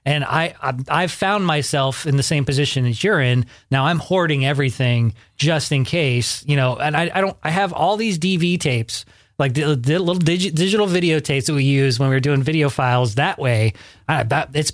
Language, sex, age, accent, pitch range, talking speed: English, male, 30-49, American, 130-160 Hz, 215 wpm